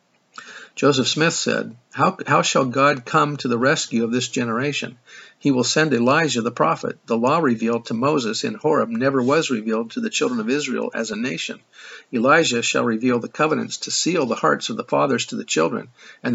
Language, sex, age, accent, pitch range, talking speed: English, male, 50-69, American, 120-140 Hz, 200 wpm